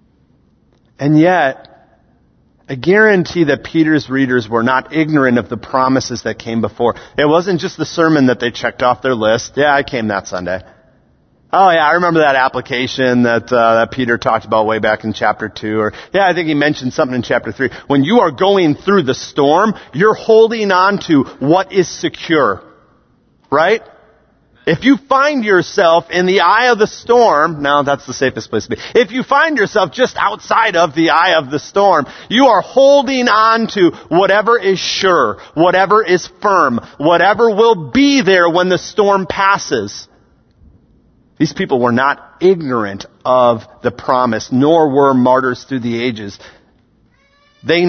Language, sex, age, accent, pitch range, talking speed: English, male, 30-49, American, 115-170 Hz, 170 wpm